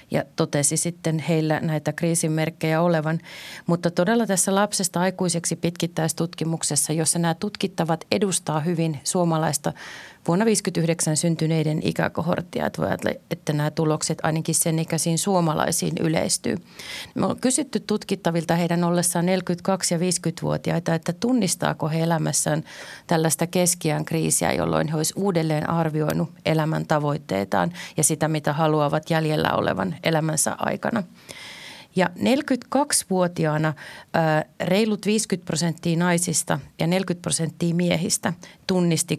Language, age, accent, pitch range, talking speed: Finnish, 30-49, native, 160-180 Hz, 115 wpm